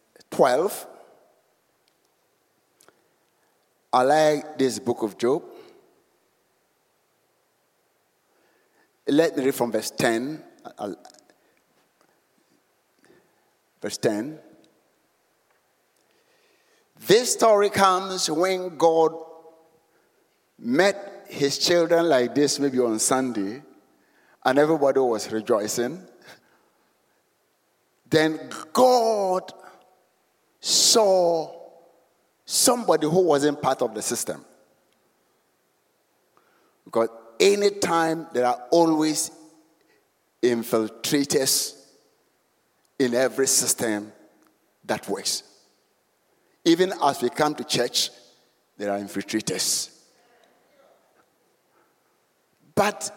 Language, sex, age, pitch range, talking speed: English, male, 60-79, 135-205 Hz, 75 wpm